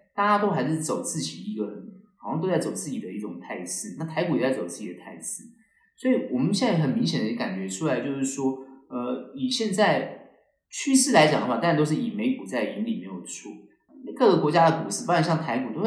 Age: 30-49